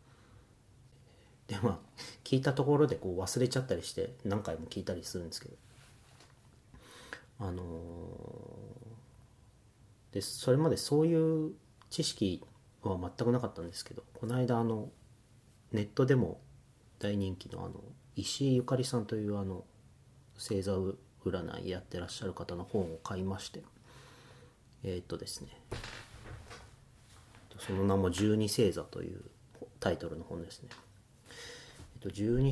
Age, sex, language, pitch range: 40-59, male, Japanese, 95-125 Hz